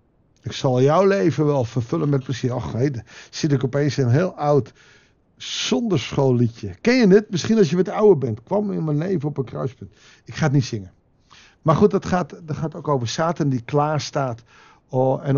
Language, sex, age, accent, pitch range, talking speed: Dutch, male, 60-79, Dutch, 125-170 Hz, 210 wpm